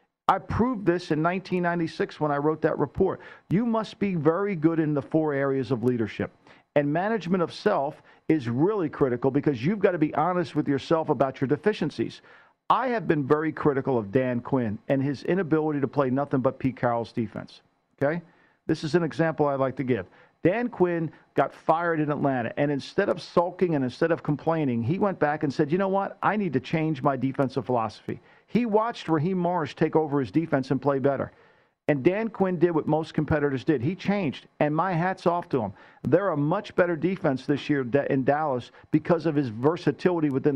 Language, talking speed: English, 200 wpm